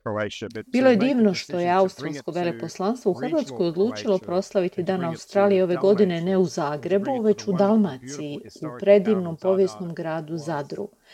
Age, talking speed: 40-59, 140 wpm